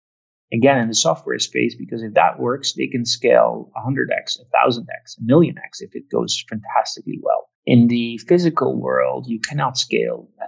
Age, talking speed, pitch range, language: 30-49, 195 wpm, 120-175 Hz, German